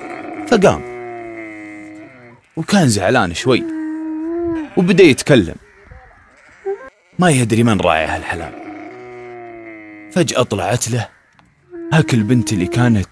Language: Arabic